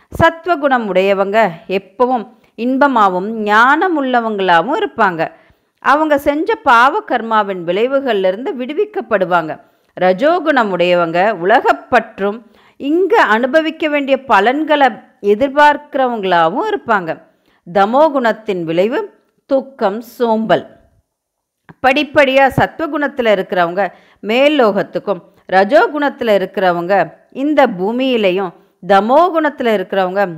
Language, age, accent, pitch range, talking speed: Tamil, 50-69, native, 200-275 Hz, 70 wpm